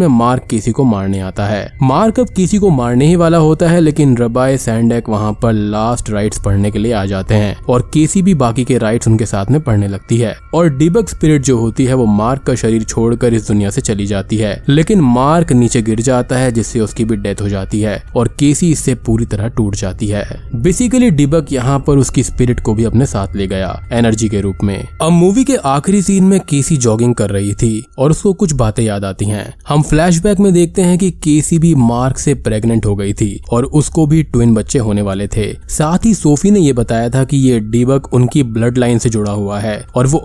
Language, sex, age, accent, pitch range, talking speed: Hindi, male, 20-39, native, 105-145 Hz, 200 wpm